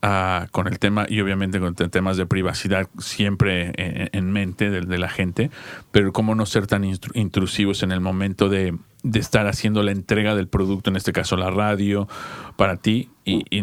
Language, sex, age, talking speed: English, male, 40-59, 200 wpm